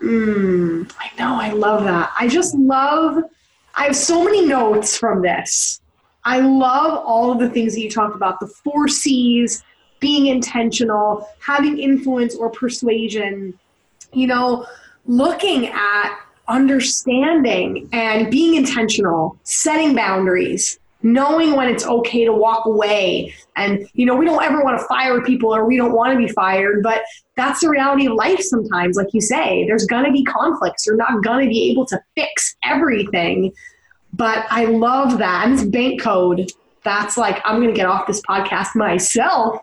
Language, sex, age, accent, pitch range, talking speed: English, female, 20-39, American, 210-275 Hz, 170 wpm